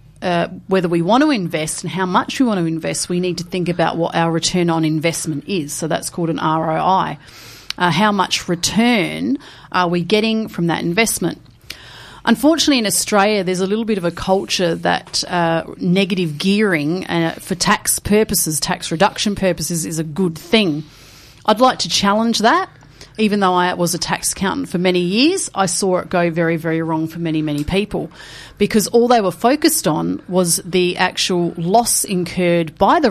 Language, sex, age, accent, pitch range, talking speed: English, female, 30-49, Australian, 165-205 Hz, 185 wpm